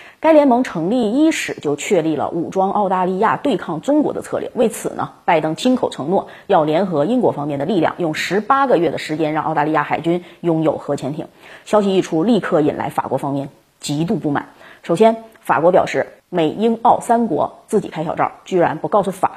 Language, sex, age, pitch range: Chinese, female, 30-49, 160-230 Hz